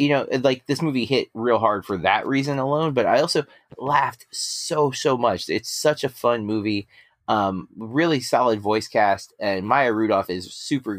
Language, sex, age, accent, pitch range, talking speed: English, male, 30-49, American, 105-140 Hz, 185 wpm